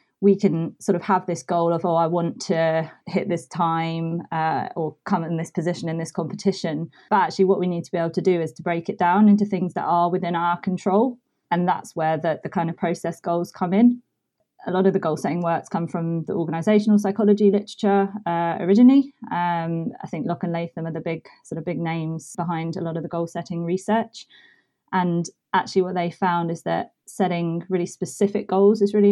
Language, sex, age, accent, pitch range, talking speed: English, female, 20-39, British, 170-200 Hz, 220 wpm